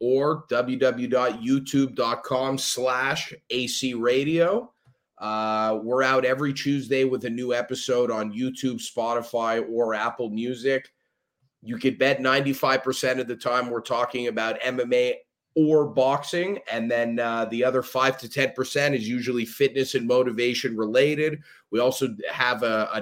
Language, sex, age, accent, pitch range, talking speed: English, male, 30-49, American, 120-130 Hz, 135 wpm